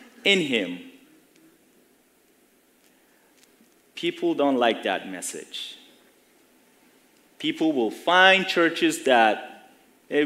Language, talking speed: English, 75 wpm